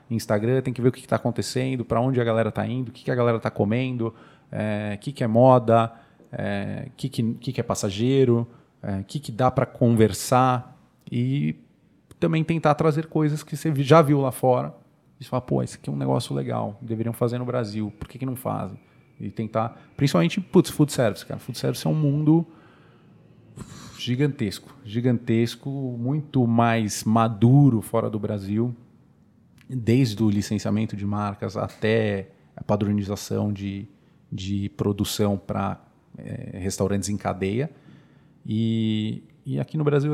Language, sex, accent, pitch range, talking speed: Portuguese, male, Brazilian, 105-135 Hz, 165 wpm